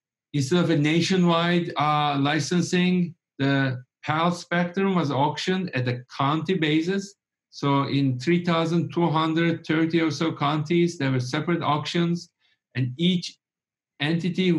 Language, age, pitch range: English, 50-69, 130-170 Hz